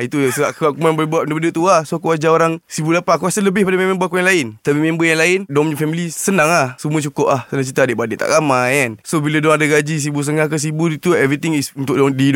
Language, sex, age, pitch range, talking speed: Malay, male, 20-39, 130-155 Hz, 250 wpm